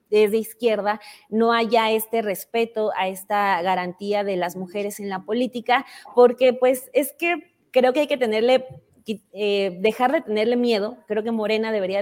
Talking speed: 165 wpm